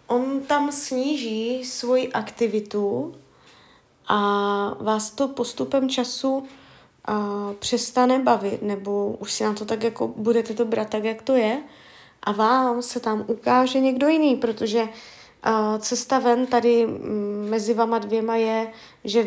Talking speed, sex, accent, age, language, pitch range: 135 wpm, female, native, 20-39, Czech, 210-250 Hz